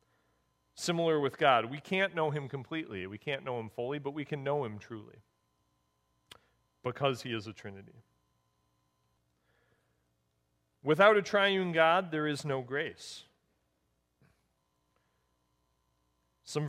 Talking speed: 120 wpm